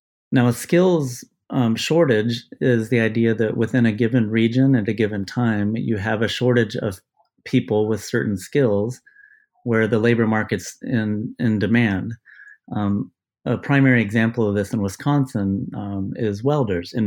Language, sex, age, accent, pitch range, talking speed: English, male, 30-49, American, 105-130 Hz, 160 wpm